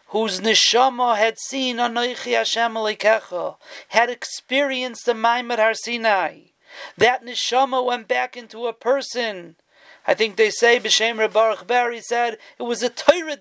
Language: English